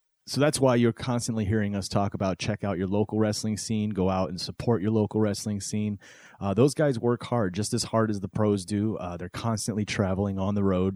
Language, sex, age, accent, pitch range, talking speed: English, male, 30-49, American, 95-110 Hz, 230 wpm